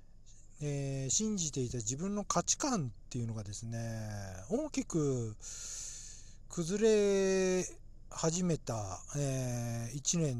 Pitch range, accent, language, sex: 115-165 Hz, native, Japanese, male